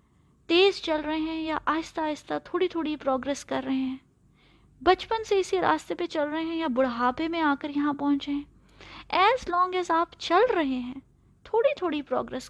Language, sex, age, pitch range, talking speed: Urdu, female, 20-39, 265-335 Hz, 185 wpm